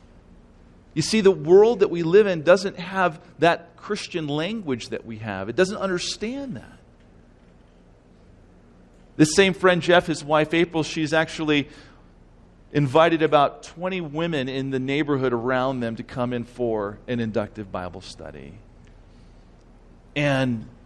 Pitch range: 110-160 Hz